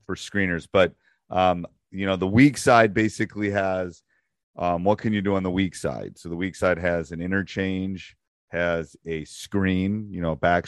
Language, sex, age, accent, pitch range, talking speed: English, male, 30-49, American, 85-100 Hz, 185 wpm